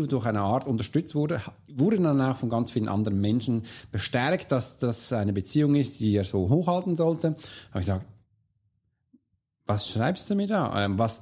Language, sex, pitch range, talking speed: German, male, 110-150 Hz, 175 wpm